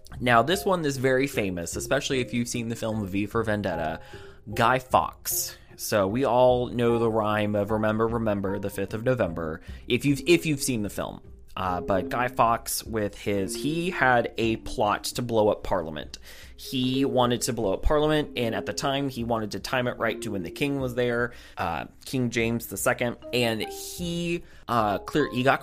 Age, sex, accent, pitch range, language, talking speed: 20-39, male, American, 105-130 Hz, English, 190 wpm